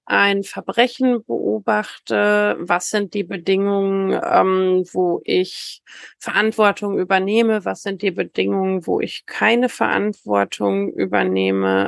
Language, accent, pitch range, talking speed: German, German, 190-225 Hz, 105 wpm